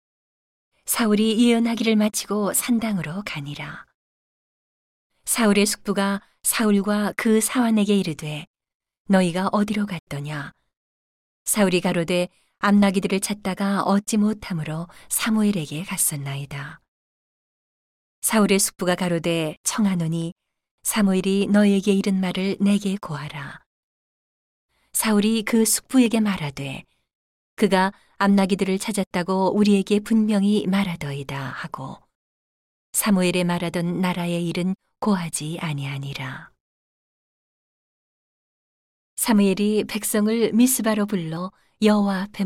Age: 40-59